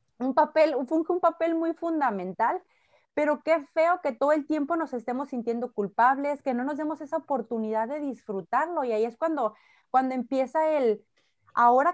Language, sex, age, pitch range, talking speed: Spanish, female, 30-49, 235-310 Hz, 175 wpm